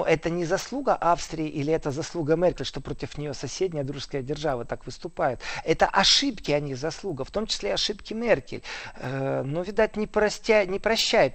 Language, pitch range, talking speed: Russian, 140-185 Hz, 175 wpm